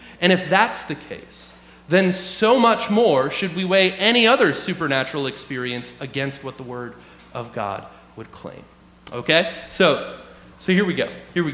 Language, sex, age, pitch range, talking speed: English, male, 30-49, 145-195 Hz, 165 wpm